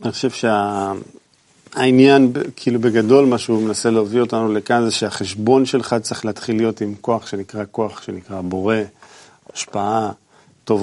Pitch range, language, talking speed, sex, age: 110-130 Hz, Hebrew, 140 wpm, male, 40-59